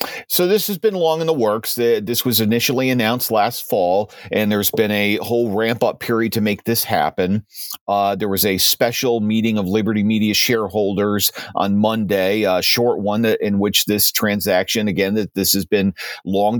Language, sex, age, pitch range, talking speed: English, male, 40-59, 100-115 Hz, 185 wpm